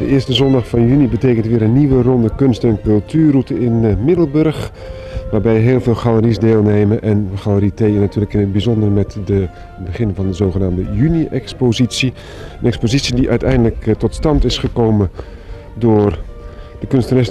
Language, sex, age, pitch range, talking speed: Dutch, male, 50-69, 100-120 Hz, 155 wpm